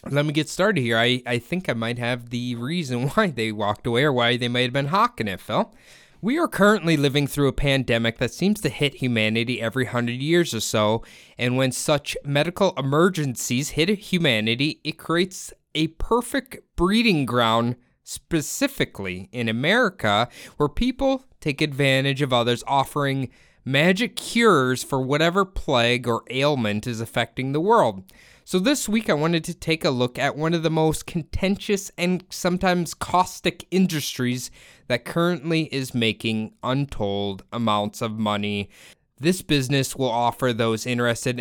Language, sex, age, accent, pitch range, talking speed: English, male, 20-39, American, 120-165 Hz, 160 wpm